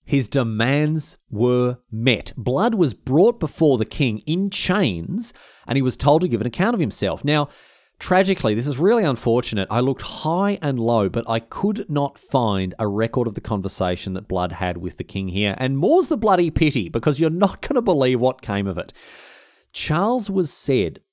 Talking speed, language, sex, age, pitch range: 195 wpm, English, male, 30-49, 115-195 Hz